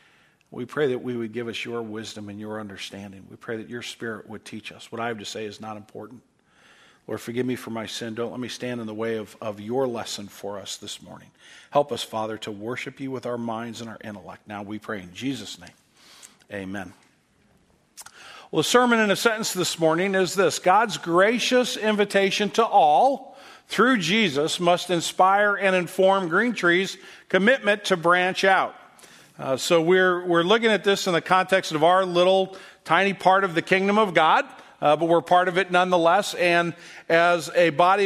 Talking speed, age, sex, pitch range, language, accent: 200 wpm, 50-69, male, 125-195 Hz, English, American